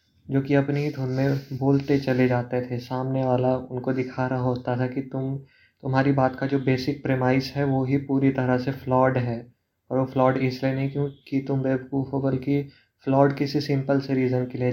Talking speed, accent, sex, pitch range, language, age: 200 wpm, native, male, 125-135 Hz, Hindi, 20-39